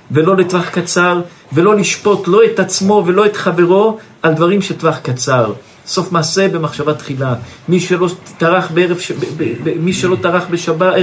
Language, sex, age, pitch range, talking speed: Hebrew, male, 50-69, 155-190 Hz, 165 wpm